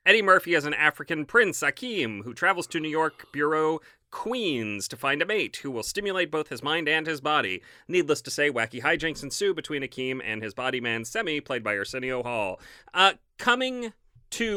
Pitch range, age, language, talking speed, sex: 125-175 Hz, 30-49, English, 195 wpm, male